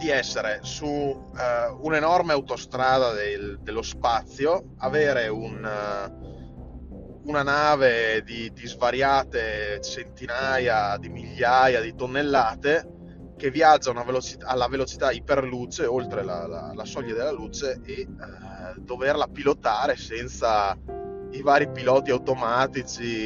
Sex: male